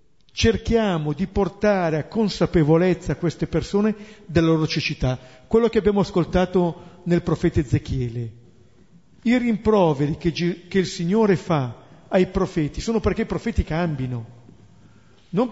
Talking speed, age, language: 120 wpm, 50-69, Italian